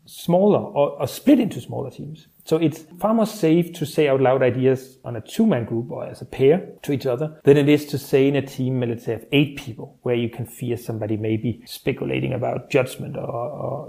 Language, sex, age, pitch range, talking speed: German, male, 30-49, 120-160 Hz, 225 wpm